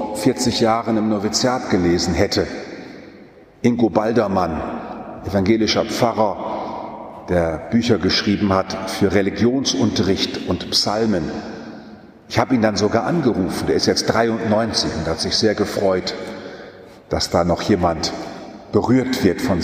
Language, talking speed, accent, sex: German, 120 wpm, German, male